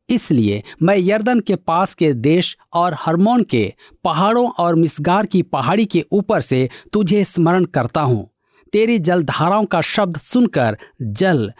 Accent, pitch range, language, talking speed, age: native, 135-200 Hz, Hindi, 145 wpm, 50-69